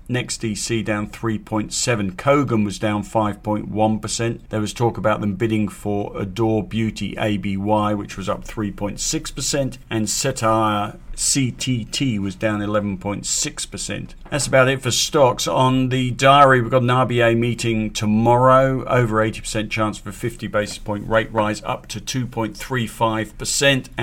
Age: 50-69